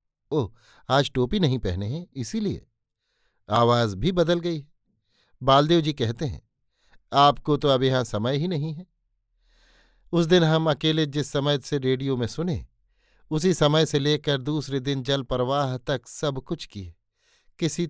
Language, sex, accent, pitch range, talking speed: Hindi, male, native, 115-145 Hz, 155 wpm